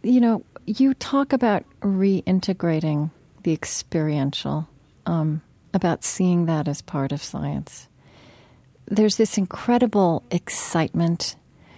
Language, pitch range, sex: English, 160-195 Hz, female